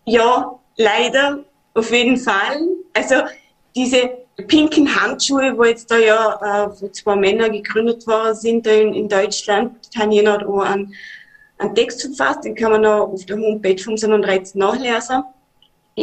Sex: female